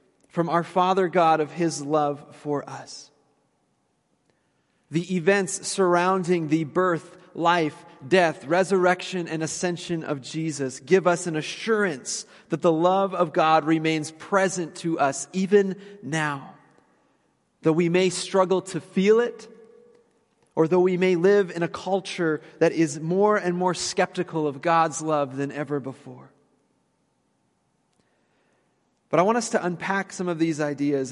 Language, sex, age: English, male, 30-49